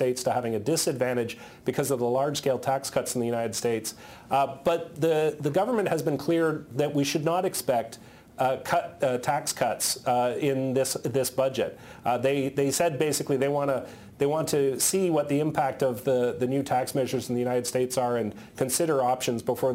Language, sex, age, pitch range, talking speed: English, male, 40-59, 125-150 Hz, 205 wpm